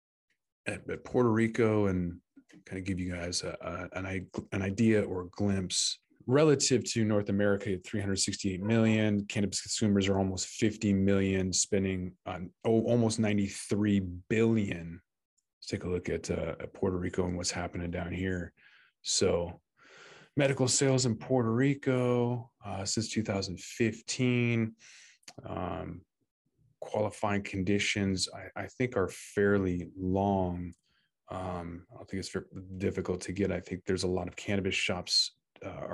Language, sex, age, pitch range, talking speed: English, male, 20-39, 95-110 Hz, 140 wpm